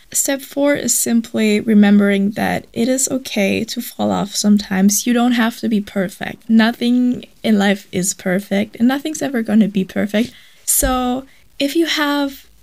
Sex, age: female, 10-29